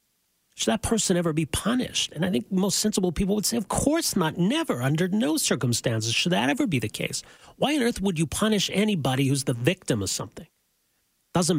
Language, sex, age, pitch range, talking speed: English, male, 40-59, 125-155 Hz, 205 wpm